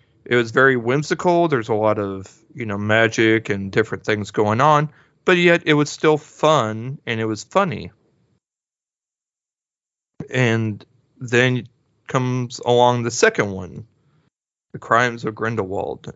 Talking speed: 135 wpm